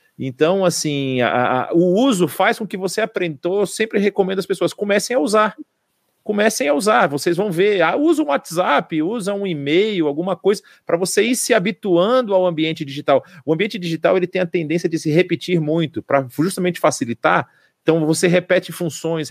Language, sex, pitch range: Portuguese, male, 140-180 Hz